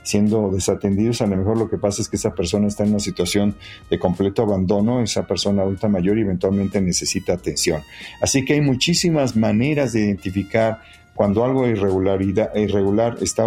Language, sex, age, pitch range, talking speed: Spanish, male, 50-69, 95-110 Hz, 170 wpm